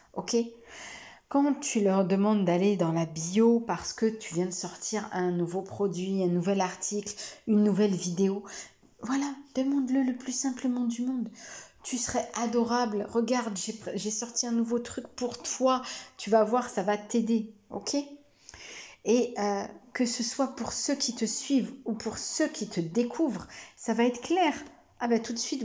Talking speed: 175 wpm